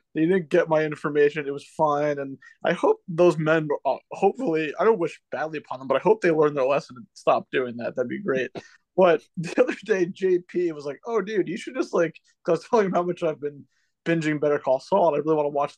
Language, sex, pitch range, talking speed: English, male, 150-210 Hz, 255 wpm